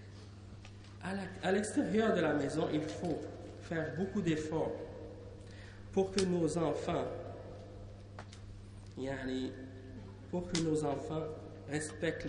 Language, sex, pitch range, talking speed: French, male, 100-165 Hz, 105 wpm